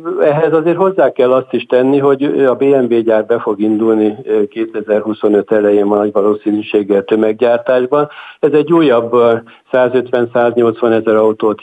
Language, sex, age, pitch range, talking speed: Hungarian, male, 60-79, 110-130 Hz, 135 wpm